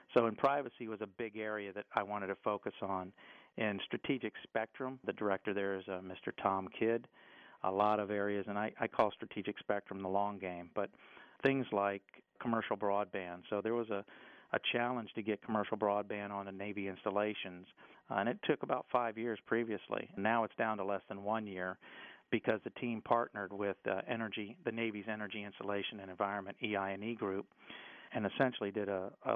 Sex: male